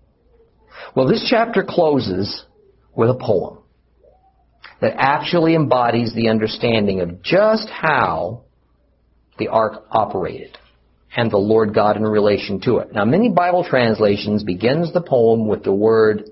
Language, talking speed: English, 130 wpm